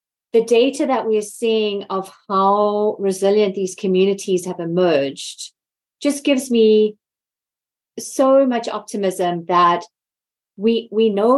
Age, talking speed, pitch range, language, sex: 30-49, 120 wpm, 180-220 Hz, English, female